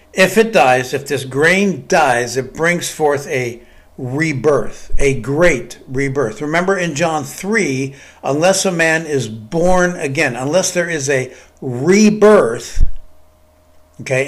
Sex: male